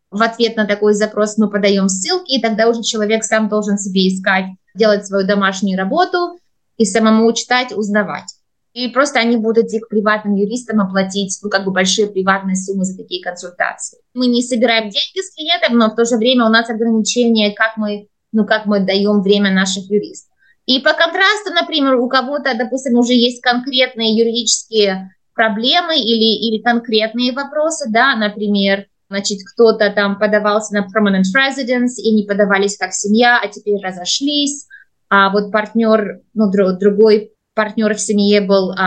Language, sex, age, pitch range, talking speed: Russian, female, 20-39, 200-245 Hz, 165 wpm